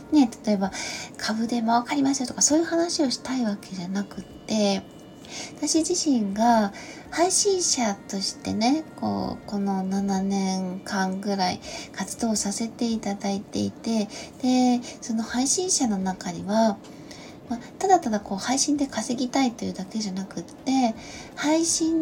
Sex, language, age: female, Japanese, 20-39